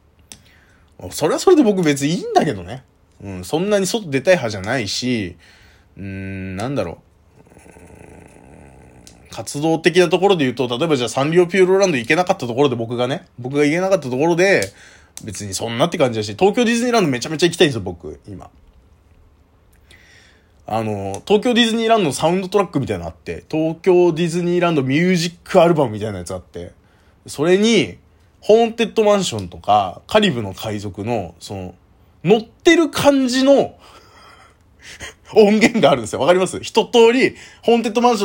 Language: Japanese